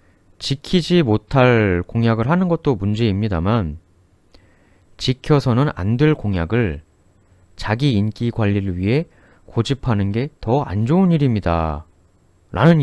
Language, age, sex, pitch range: Korean, 30-49, male, 90-135 Hz